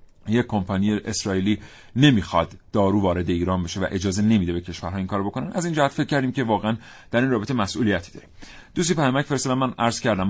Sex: male